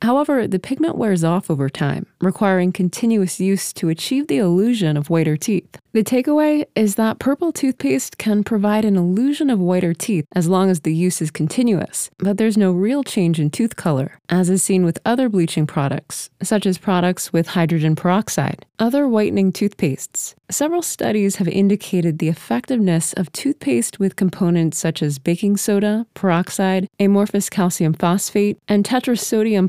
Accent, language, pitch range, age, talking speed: American, English, 170-220 Hz, 20-39, 165 wpm